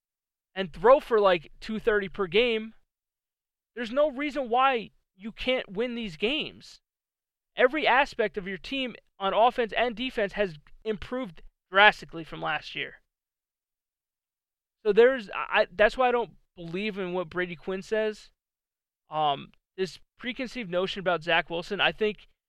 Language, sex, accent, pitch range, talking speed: English, male, American, 170-220 Hz, 140 wpm